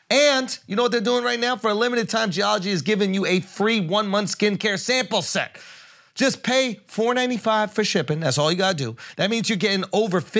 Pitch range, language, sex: 145-210 Hz, English, male